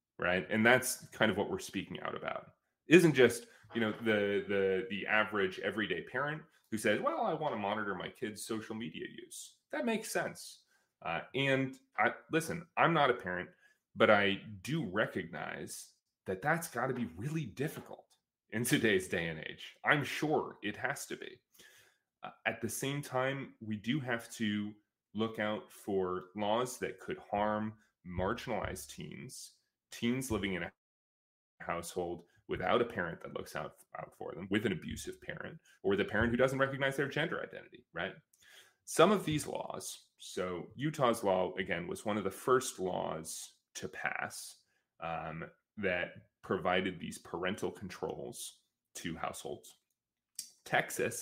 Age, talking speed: 30-49, 155 wpm